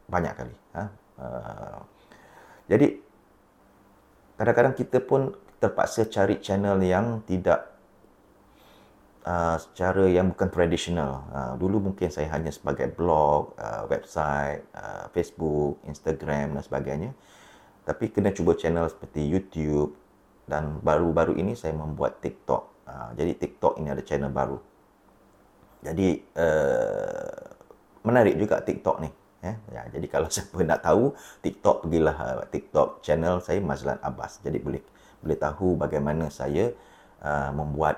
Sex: male